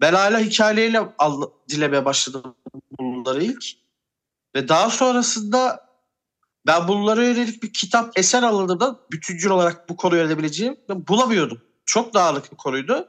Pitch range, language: 160-220 Hz, Turkish